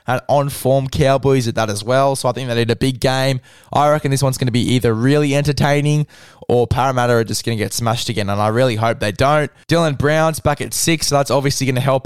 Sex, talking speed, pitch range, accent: male, 255 wpm, 115-135 Hz, Australian